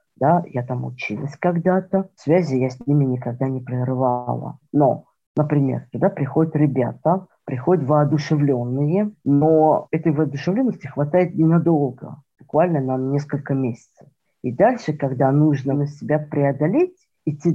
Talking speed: 115 wpm